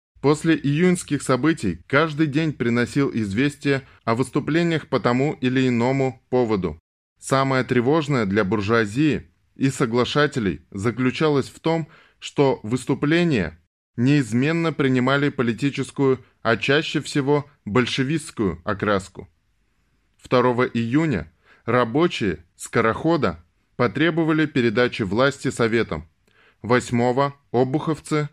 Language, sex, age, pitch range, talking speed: Russian, male, 20-39, 105-140 Hz, 90 wpm